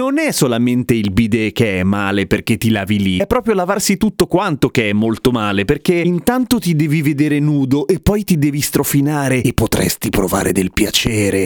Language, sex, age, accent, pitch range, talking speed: Italian, male, 30-49, native, 115-180 Hz, 195 wpm